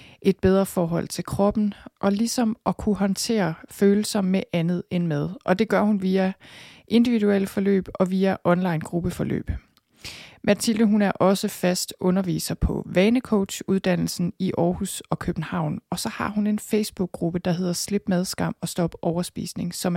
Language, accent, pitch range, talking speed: Danish, native, 170-200 Hz, 155 wpm